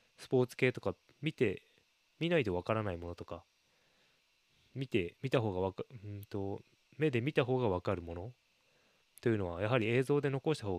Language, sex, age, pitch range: Japanese, male, 20-39, 95-125 Hz